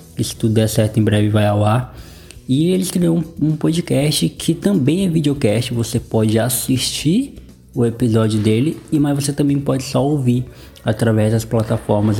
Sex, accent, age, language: male, Brazilian, 20-39, Portuguese